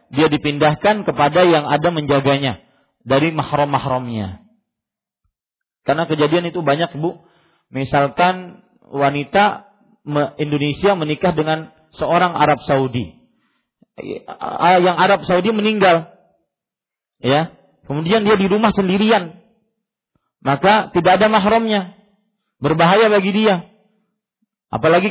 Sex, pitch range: male, 145-195 Hz